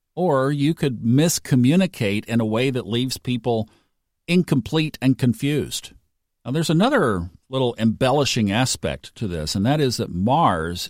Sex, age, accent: male, 50-69, American